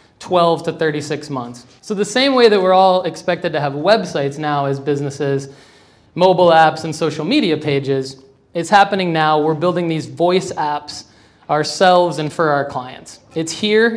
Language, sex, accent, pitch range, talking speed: English, male, American, 150-175 Hz, 170 wpm